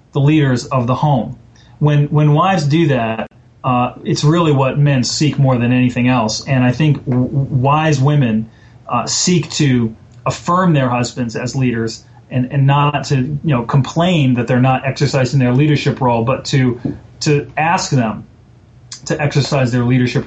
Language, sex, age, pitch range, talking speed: English, male, 30-49, 120-140 Hz, 170 wpm